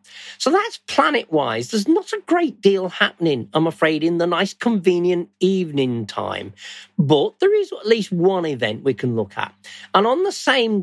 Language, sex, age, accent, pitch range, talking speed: English, male, 50-69, British, 140-205 Hz, 175 wpm